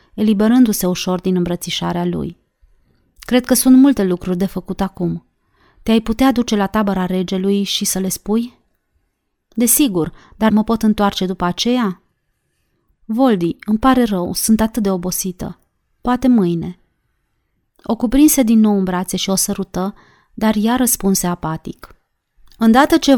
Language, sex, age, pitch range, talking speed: Romanian, female, 30-49, 180-230 Hz, 140 wpm